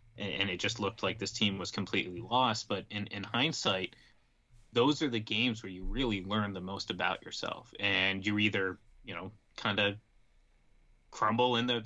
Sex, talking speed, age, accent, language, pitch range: male, 180 wpm, 20-39, American, English, 105-120 Hz